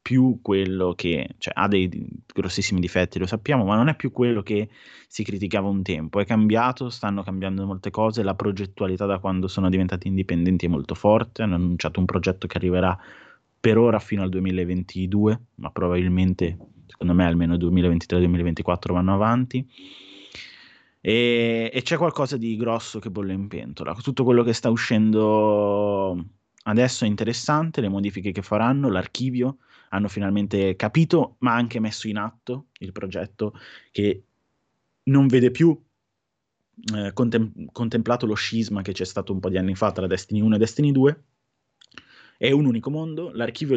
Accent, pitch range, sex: native, 95-120 Hz, male